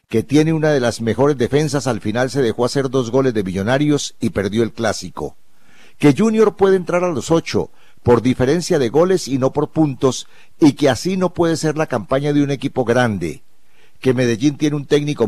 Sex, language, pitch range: male, Spanish, 115-150 Hz